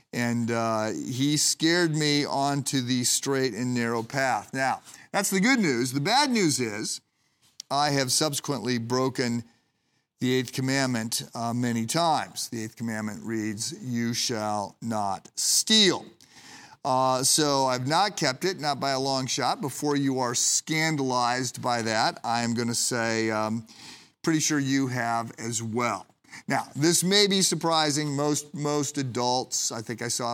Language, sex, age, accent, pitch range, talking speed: English, male, 50-69, American, 120-145 Hz, 150 wpm